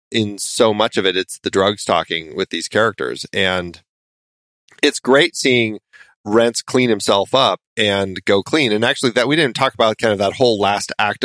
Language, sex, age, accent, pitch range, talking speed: English, male, 30-49, American, 95-125 Hz, 190 wpm